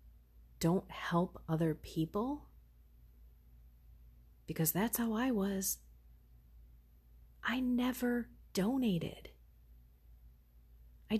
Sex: female